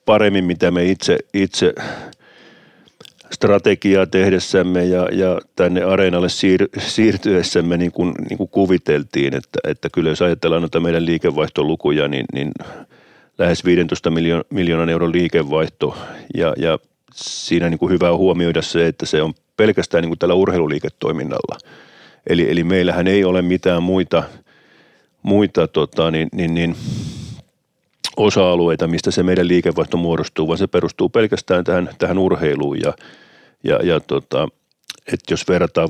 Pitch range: 85-90 Hz